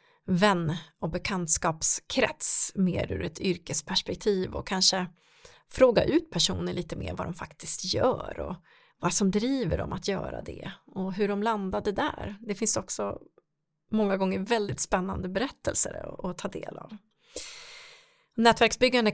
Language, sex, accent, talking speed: Swedish, female, native, 140 wpm